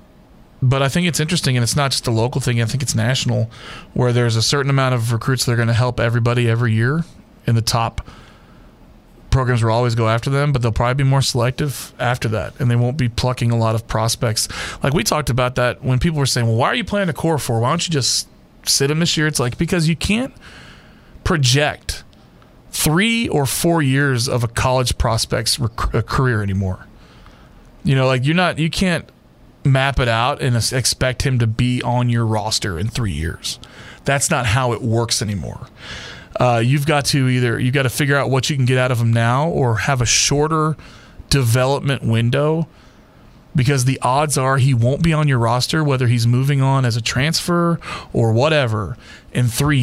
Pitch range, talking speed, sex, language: 115-140 Hz, 205 wpm, male, English